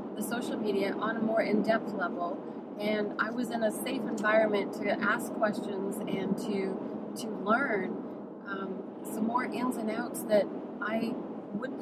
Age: 30-49